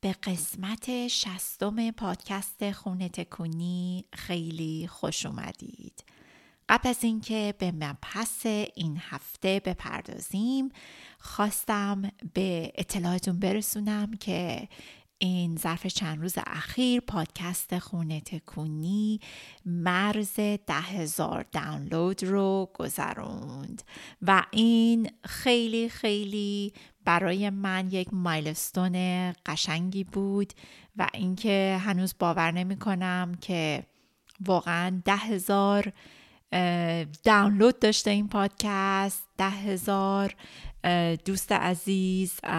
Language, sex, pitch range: Persian, female, 170-205 Hz